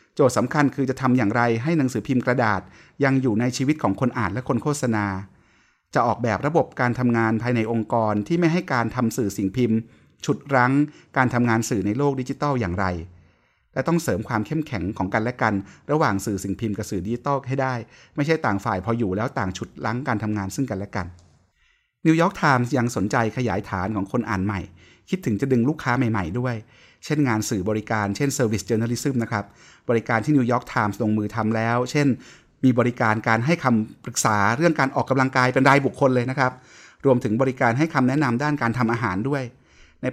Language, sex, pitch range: Thai, male, 110-135 Hz